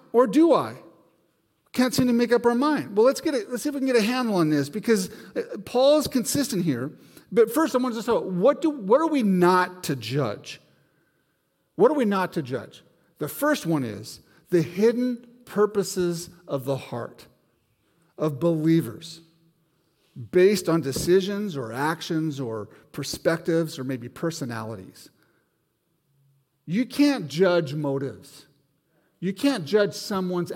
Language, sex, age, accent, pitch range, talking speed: English, male, 50-69, American, 155-225 Hz, 155 wpm